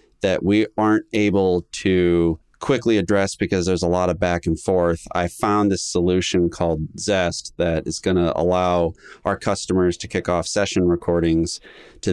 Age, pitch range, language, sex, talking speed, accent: 30-49, 85-100 Hz, English, male, 165 wpm, American